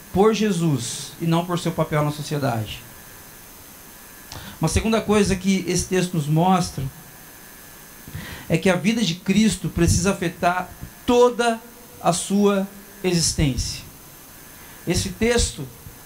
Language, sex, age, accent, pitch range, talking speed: Portuguese, male, 40-59, Brazilian, 170-215 Hz, 115 wpm